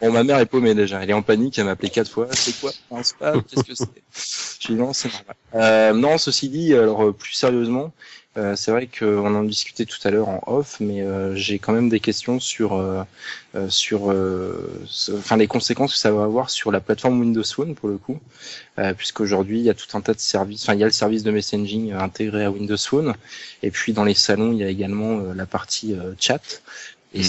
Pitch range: 100-115 Hz